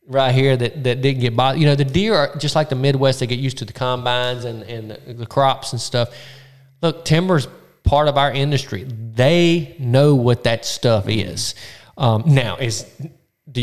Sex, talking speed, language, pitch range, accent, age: male, 200 wpm, English, 115-140 Hz, American, 20-39